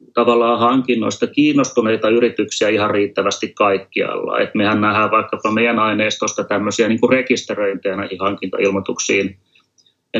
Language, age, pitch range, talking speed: Finnish, 30-49, 100-115 Hz, 105 wpm